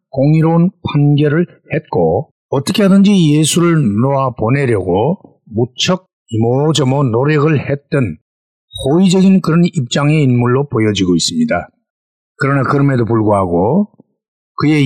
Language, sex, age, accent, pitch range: Korean, male, 60-79, native, 120-165 Hz